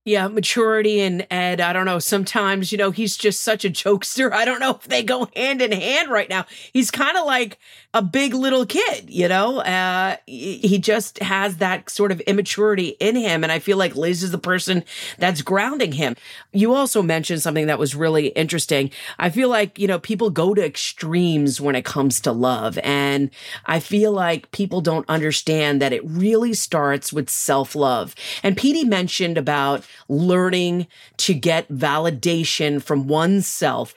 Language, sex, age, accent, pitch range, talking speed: English, female, 40-59, American, 155-205 Hz, 180 wpm